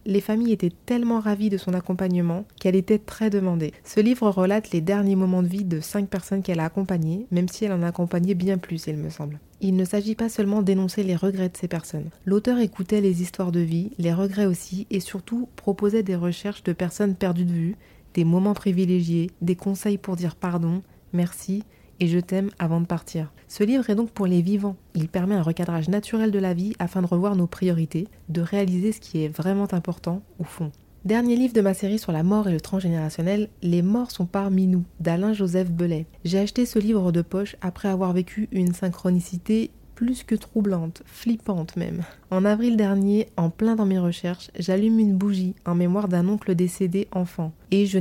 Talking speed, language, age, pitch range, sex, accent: 205 wpm, French, 30-49, 175-205 Hz, female, French